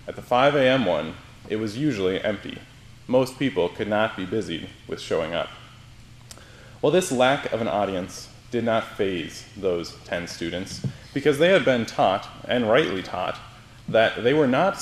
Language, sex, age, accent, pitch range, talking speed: English, male, 20-39, American, 105-125 Hz, 170 wpm